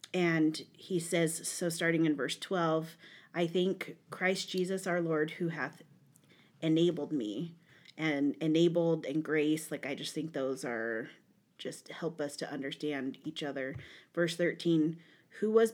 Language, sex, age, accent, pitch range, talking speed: English, female, 30-49, American, 155-180 Hz, 150 wpm